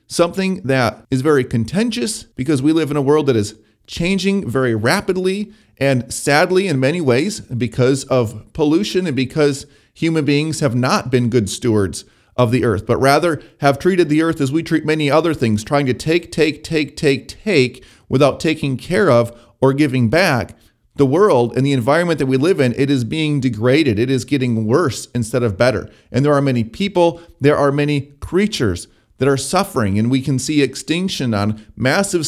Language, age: English, 30-49